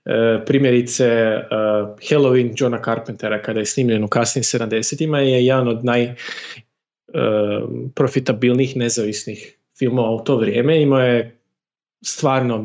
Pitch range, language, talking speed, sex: 120-145 Hz, Croatian, 105 wpm, male